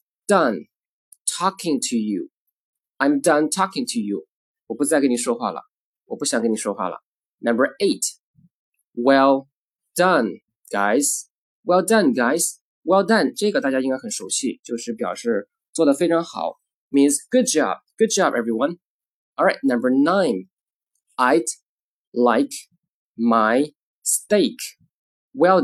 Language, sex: Chinese, male